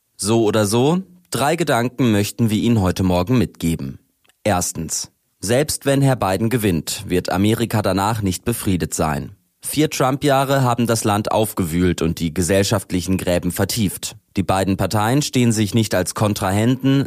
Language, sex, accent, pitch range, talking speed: German, male, German, 90-120 Hz, 150 wpm